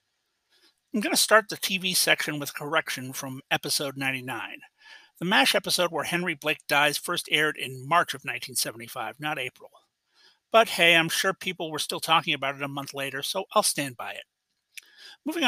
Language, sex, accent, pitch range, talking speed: English, male, American, 145-190 Hz, 180 wpm